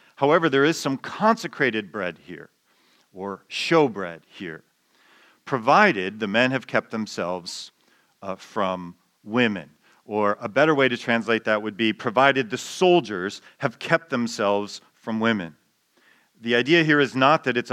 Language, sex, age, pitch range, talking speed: English, male, 40-59, 120-155 Hz, 145 wpm